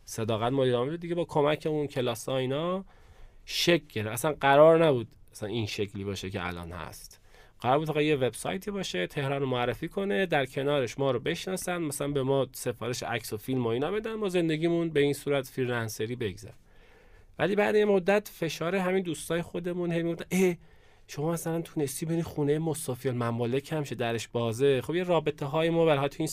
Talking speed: 175 wpm